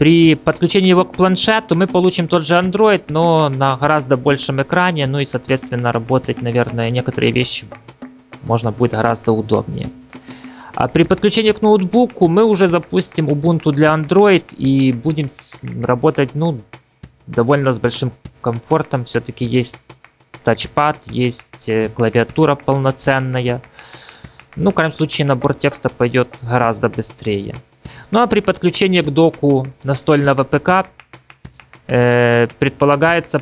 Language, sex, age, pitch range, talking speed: Russian, male, 20-39, 120-165 Hz, 125 wpm